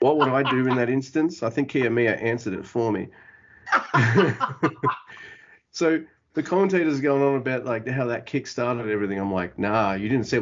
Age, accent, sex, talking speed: 30-49, Australian, male, 190 wpm